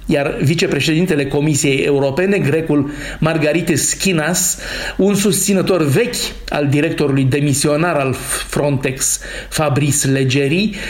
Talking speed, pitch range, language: 95 wpm, 145-190 Hz, Romanian